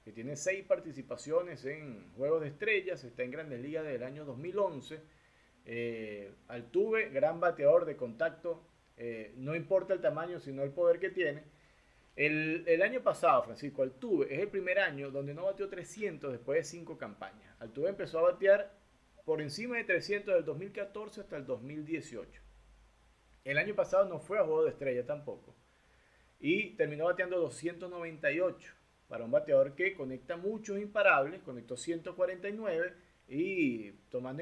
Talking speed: 150 wpm